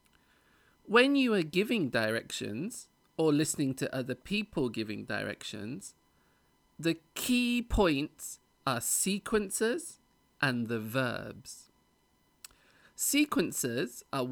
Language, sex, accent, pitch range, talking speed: English, male, British, 110-185 Hz, 90 wpm